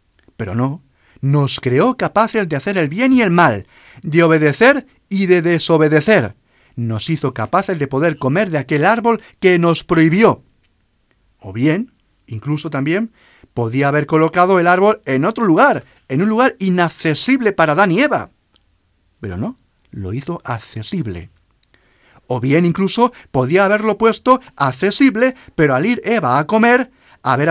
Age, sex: 40-59, male